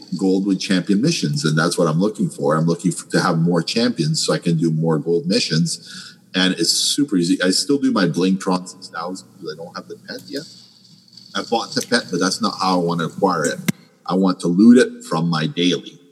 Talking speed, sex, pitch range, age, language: 240 wpm, male, 80-100 Hz, 40-59, English